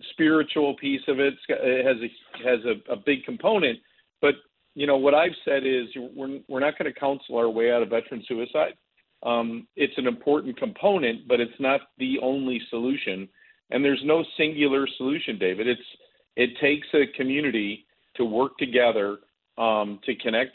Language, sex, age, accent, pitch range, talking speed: English, male, 50-69, American, 120-140 Hz, 170 wpm